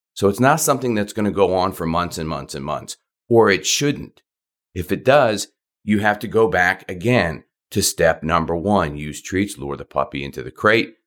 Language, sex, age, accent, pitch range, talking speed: English, male, 40-59, American, 85-115 Hz, 210 wpm